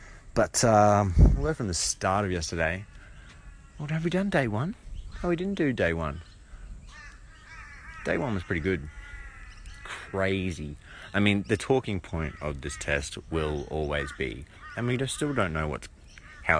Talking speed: 160 wpm